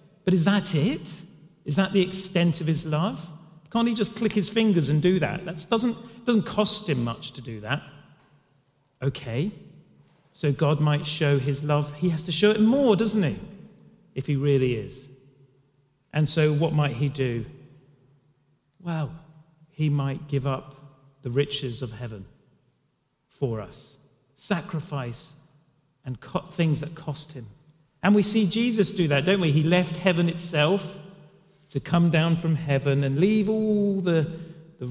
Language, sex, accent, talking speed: English, male, British, 160 wpm